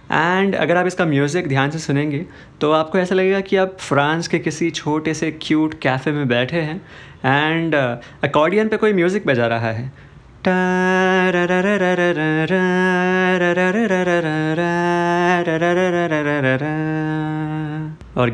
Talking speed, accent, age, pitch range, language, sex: 115 wpm, native, 20-39, 135-175 Hz, Hindi, male